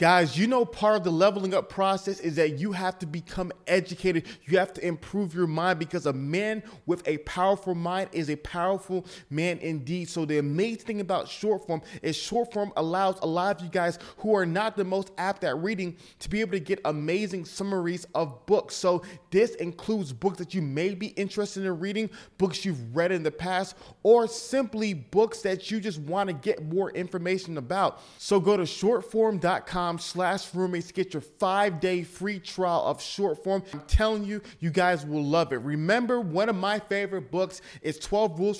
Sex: male